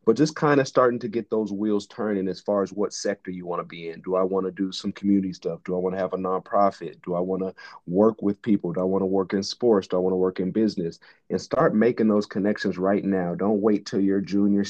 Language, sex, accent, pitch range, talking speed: English, male, American, 95-105 Hz, 280 wpm